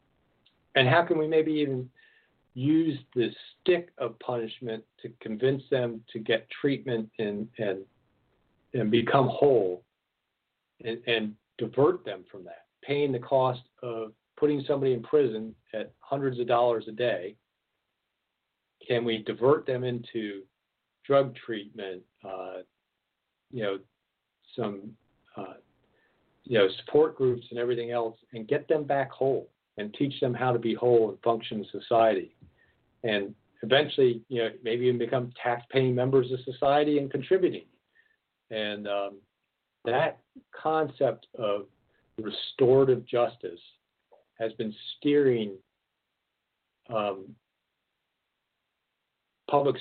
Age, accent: 50-69, American